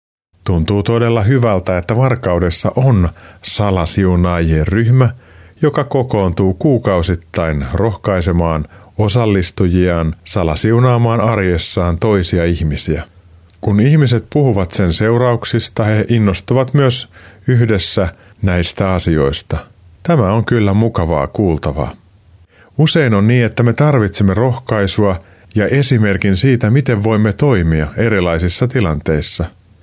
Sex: male